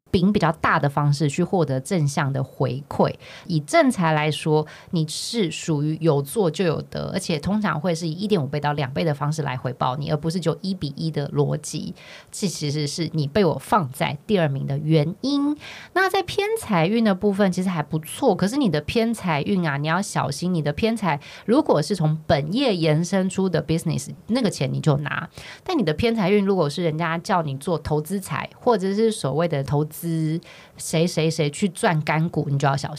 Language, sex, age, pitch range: Chinese, female, 20-39, 150-200 Hz